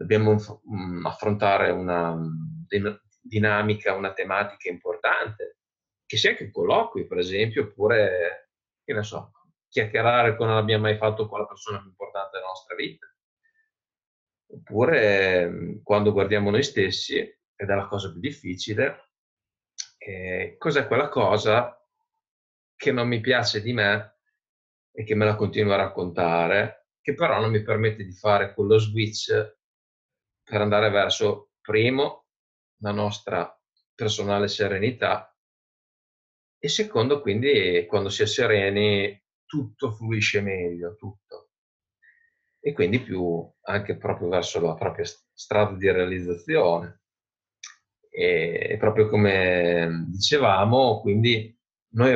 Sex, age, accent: male, 30-49, native